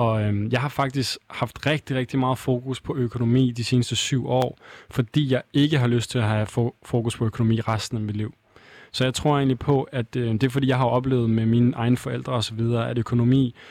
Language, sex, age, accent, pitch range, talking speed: Danish, male, 20-39, native, 115-135 Hz, 215 wpm